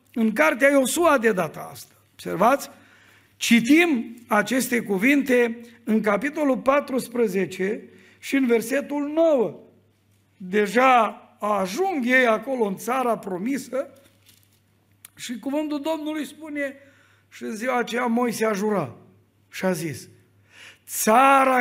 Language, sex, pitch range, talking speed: Romanian, male, 200-275 Hz, 110 wpm